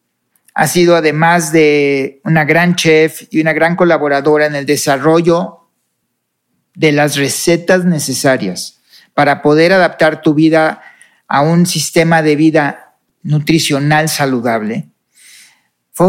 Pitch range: 145-175 Hz